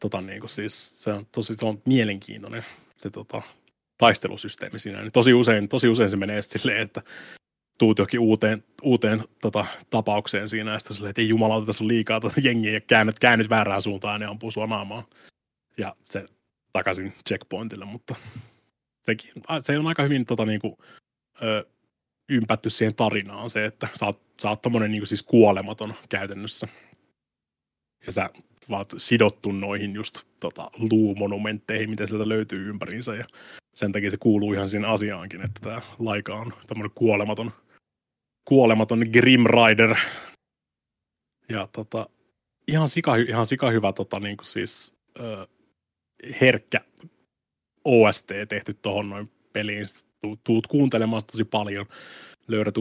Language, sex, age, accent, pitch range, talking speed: Finnish, male, 30-49, native, 105-115 Hz, 145 wpm